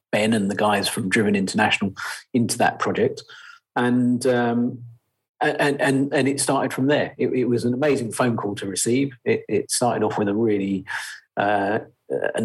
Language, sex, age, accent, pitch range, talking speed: English, male, 40-59, British, 100-125 Hz, 180 wpm